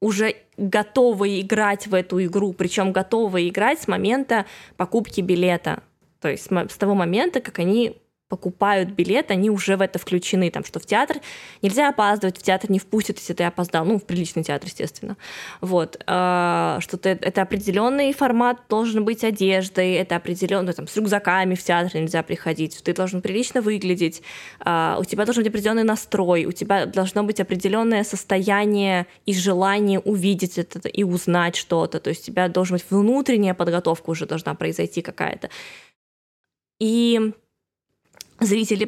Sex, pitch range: female, 185-215 Hz